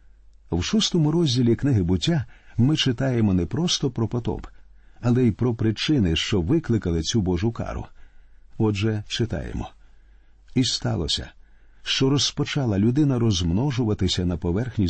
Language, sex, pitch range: Ukrainian, male, 95-130 Hz